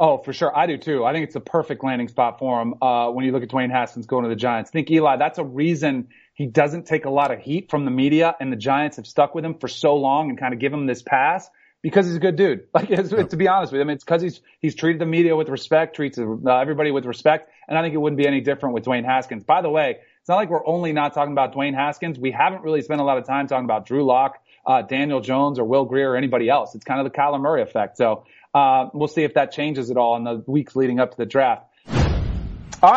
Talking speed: 285 wpm